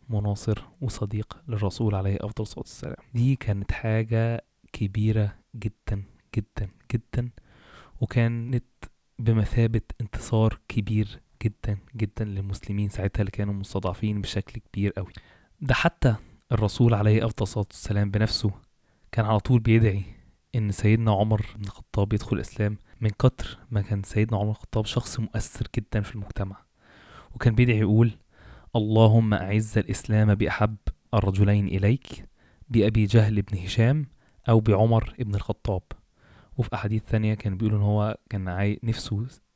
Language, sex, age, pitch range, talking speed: Arabic, male, 20-39, 100-115 Hz, 125 wpm